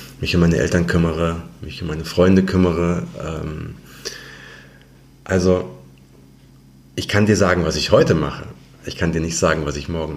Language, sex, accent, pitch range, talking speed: German, male, German, 70-95 Hz, 160 wpm